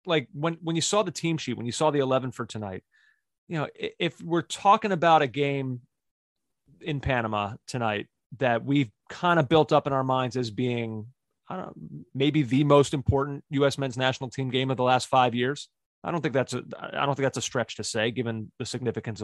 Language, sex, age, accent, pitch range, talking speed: English, male, 30-49, American, 125-155 Hz, 220 wpm